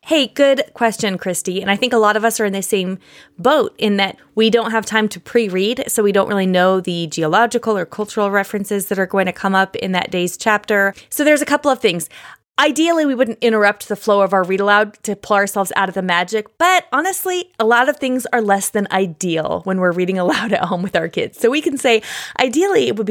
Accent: American